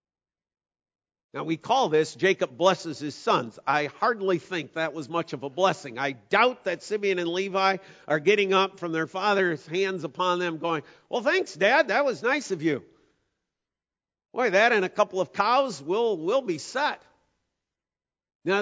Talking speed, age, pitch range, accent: 170 wpm, 50-69, 150-195 Hz, American